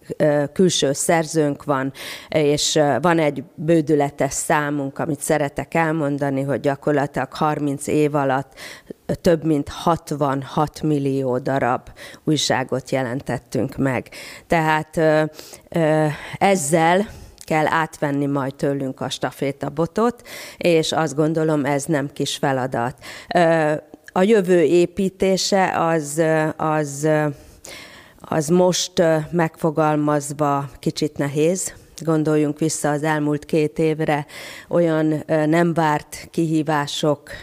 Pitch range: 145-160 Hz